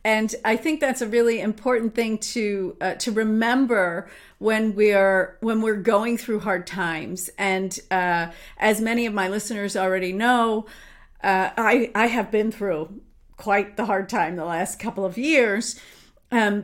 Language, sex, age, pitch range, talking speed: English, female, 40-59, 180-225 Hz, 165 wpm